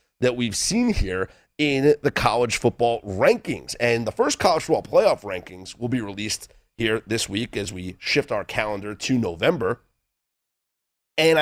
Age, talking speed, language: 30-49, 160 wpm, English